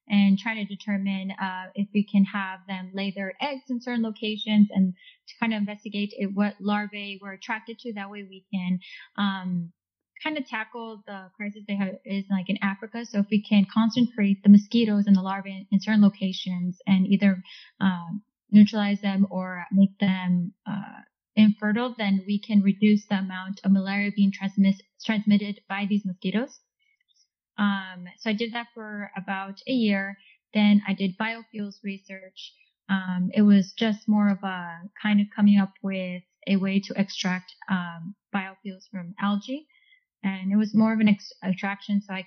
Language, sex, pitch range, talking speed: English, female, 195-215 Hz, 170 wpm